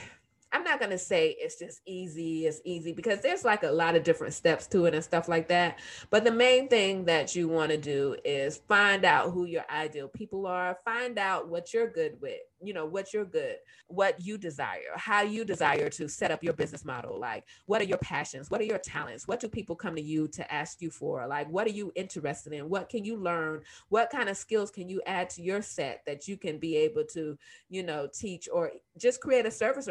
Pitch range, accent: 160-220 Hz, American